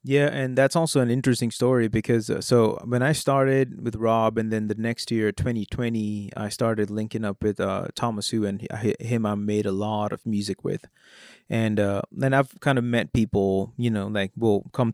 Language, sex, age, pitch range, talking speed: English, male, 20-39, 105-120 Hz, 205 wpm